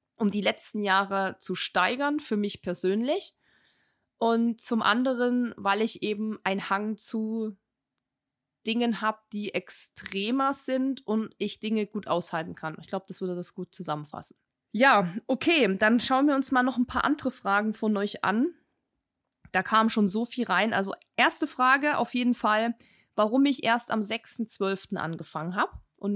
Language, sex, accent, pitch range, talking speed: German, female, German, 190-240 Hz, 165 wpm